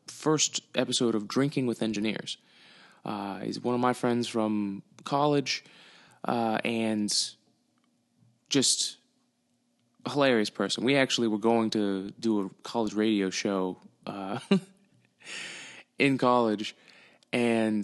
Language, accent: English, American